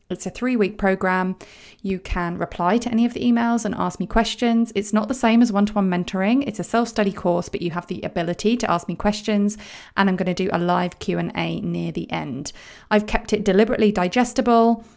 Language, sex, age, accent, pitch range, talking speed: English, female, 20-39, British, 180-215 Hz, 210 wpm